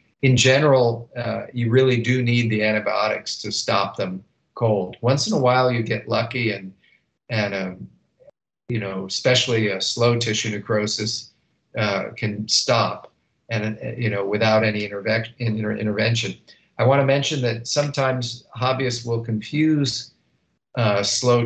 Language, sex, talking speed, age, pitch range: English, male, 150 wpm, 50-69, 110-125 Hz